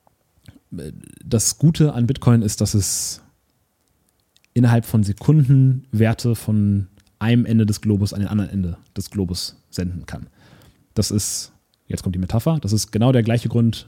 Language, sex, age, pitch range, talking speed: German, male, 30-49, 100-120 Hz, 155 wpm